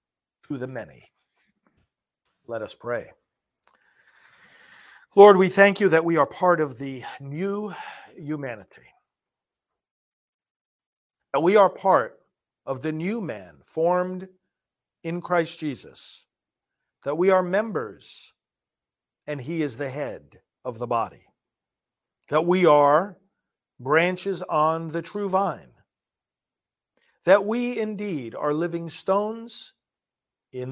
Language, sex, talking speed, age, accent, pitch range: English, male, 110 wpm, 50-69, American, 145-190 Hz